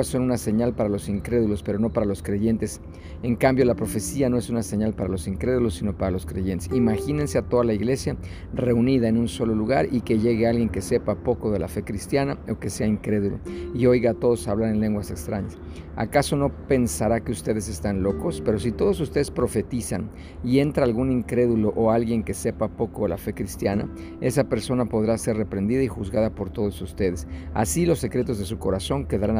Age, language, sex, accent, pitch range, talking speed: 50-69, Spanish, male, Mexican, 100-125 Hz, 205 wpm